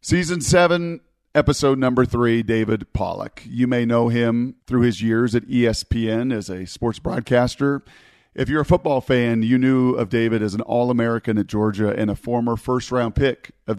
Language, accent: English, American